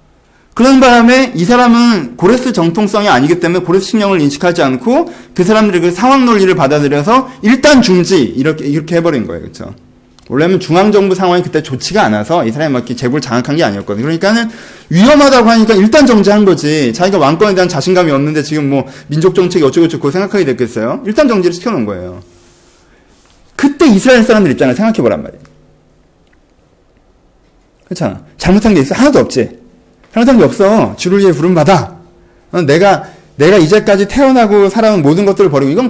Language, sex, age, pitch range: Korean, male, 30-49, 150-230 Hz